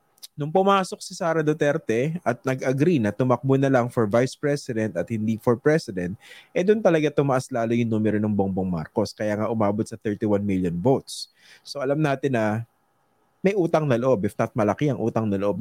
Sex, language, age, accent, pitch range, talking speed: male, English, 20-39, Filipino, 110-135 Hz, 190 wpm